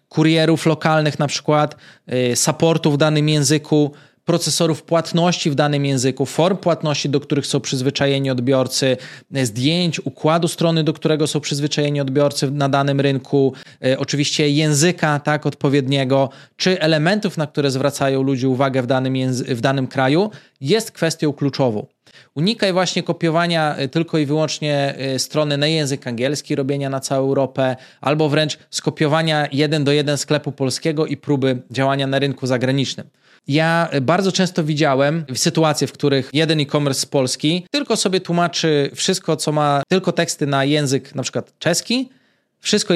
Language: Polish